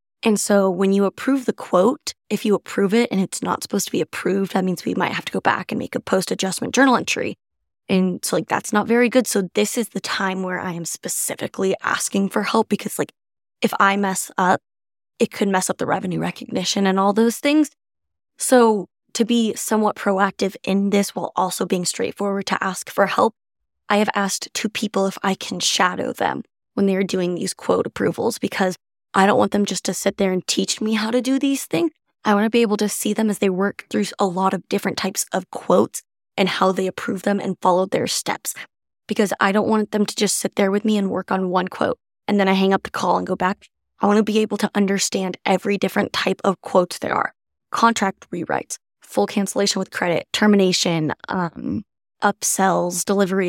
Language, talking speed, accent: English, 220 wpm, American